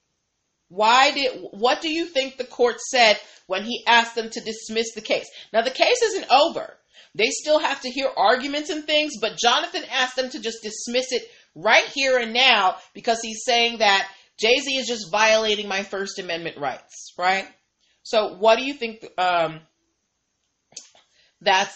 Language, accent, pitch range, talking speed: English, American, 195-240 Hz, 170 wpm